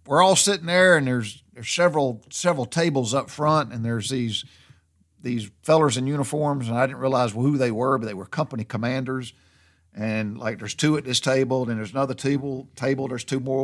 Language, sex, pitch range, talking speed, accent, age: English, male, 115-140 Hz, 205 wpm, American, 50-69